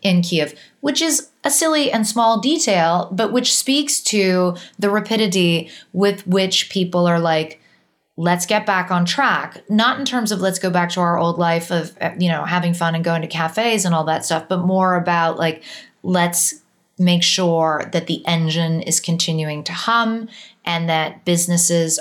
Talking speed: 180 wpm